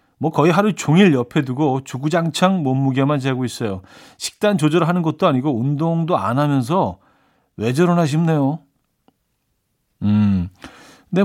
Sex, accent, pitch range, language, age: male, native, 120-160 Hz, Korean, 40-59